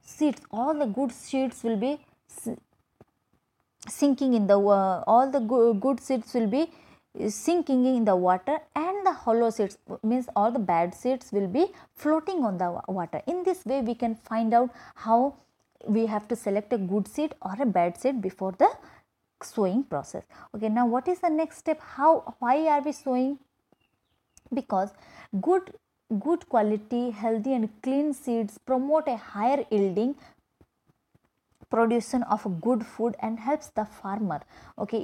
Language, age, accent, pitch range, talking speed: English, 20-39, Indian, 210-275 Hz, 160 wpm